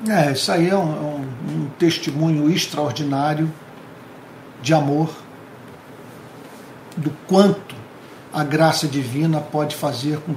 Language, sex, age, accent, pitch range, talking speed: Portuguese, male, 60-79, Brazilian, 140-155 Hz, 105 wpm